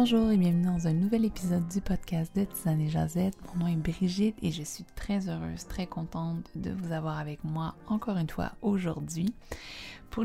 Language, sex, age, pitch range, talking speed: French, female, 20-39, 155-180 Hz, 200 wpm